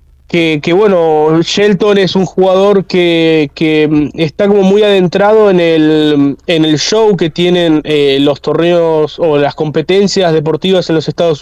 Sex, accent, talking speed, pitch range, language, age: male, Argentinian, 160 wpm, 155-195 Hz, Spanish, 20-39